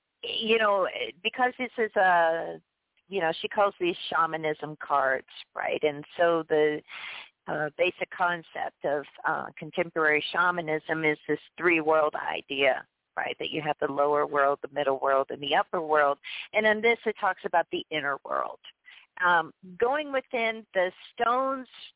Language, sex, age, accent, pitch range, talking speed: English, female, 50-69, American, 170-240 Hz, 155 wpm